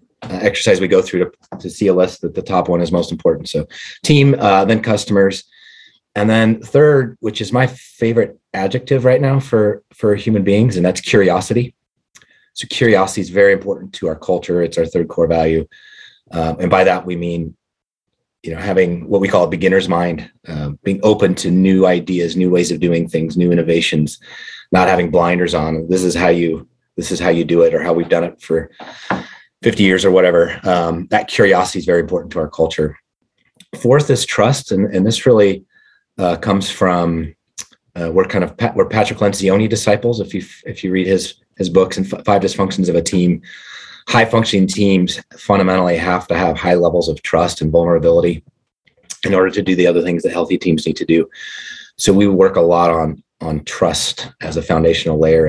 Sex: male